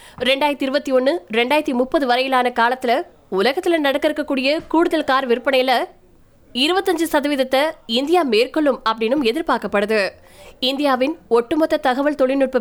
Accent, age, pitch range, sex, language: native, 20-39, 245-310 Hz, female, Tamil